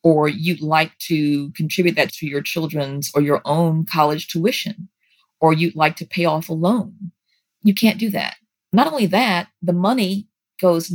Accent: American